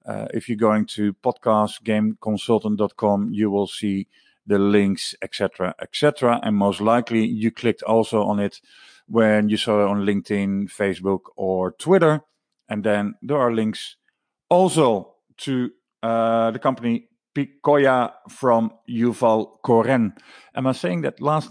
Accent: Dutch